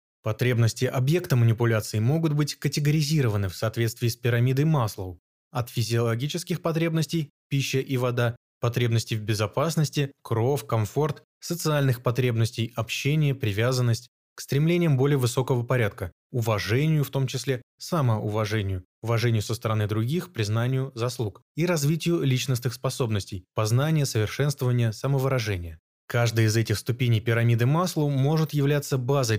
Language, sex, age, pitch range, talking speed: Russian, male, 20-39, 110-140 Hz, 120 wpm